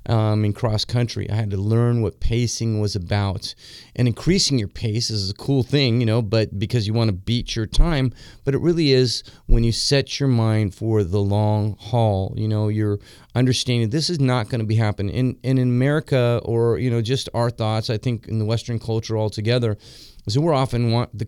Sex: male